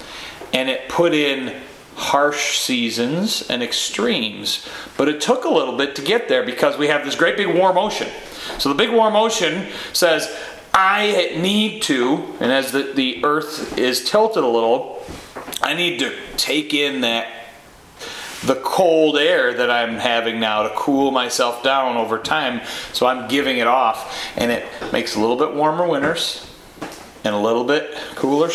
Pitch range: 115-155 Hz